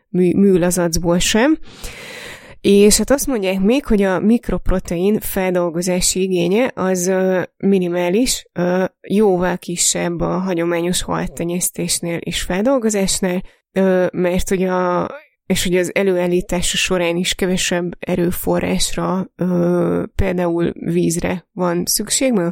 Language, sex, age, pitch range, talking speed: Hungarian, female, 20-39, 175-200 Hz, 90 wpm